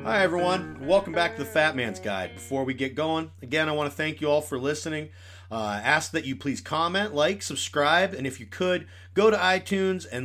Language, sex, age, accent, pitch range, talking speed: English, male, 40-59, American, 105-170 Hz, 225 wpm